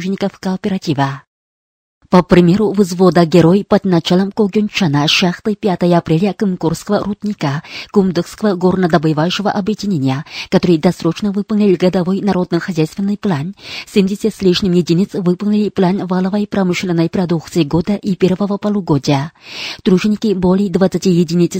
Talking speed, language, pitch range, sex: 105 wpm, Russian, 170-205 Hz, female